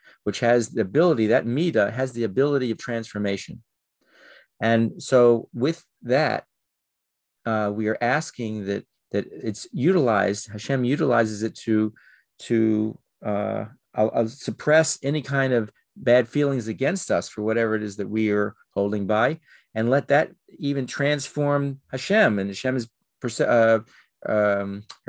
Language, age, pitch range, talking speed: English, 40-59, 100-125 Hz, 135 wpm